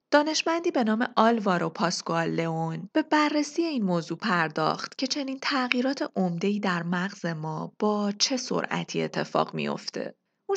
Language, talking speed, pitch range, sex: Persian, 135 wpm, 180-265 Hz, female